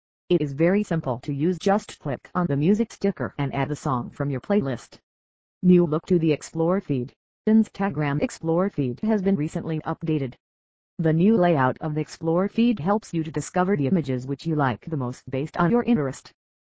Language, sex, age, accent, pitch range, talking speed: English, female, 40-59, American, 140-185 Hz, 195 wpm